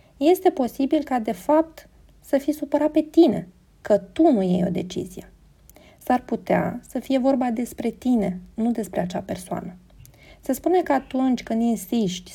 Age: 30-49